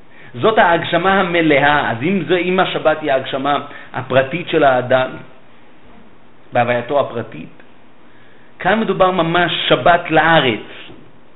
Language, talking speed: Hebrew, 105 wpm